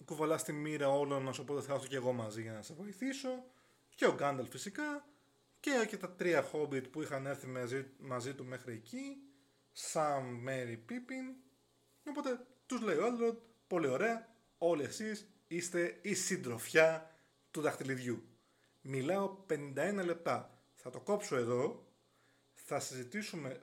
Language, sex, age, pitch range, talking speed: Greek, male, 20-39, 125-180 Hz, 140 wpm